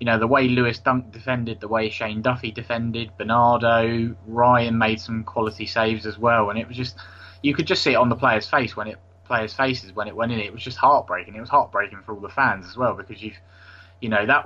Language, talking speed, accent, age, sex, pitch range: English, 245 wpm, British, 20-39, male, 105-125 Hz